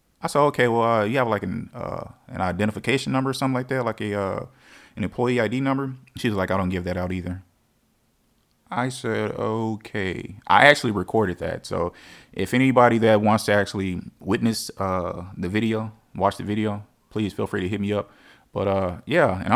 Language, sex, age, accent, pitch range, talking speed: English, male, 20-39, American, 95-125 Hz, 195 wpm